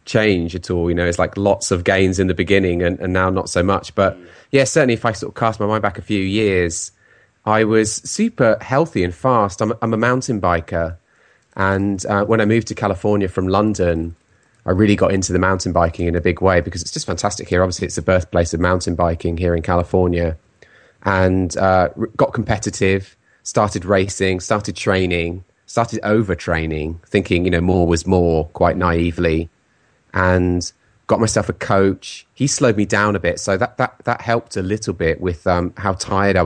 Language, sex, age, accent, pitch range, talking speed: English, male, 30-49, British, 90-110 Hz, 200 wpm